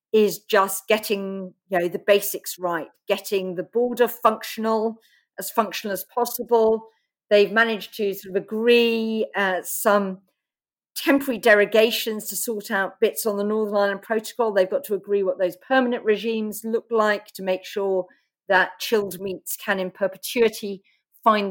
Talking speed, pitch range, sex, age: 155 wpm, 195-230 Hz, female, 40-59